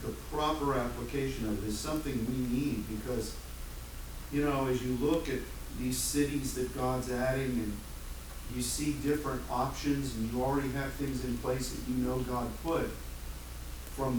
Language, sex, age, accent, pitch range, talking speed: English, male, 50-69, American, 105-140 Hz, 165 wpm